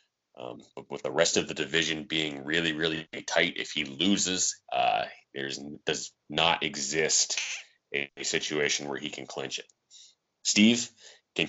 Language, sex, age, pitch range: English, male, 30-49, 75-95 Hz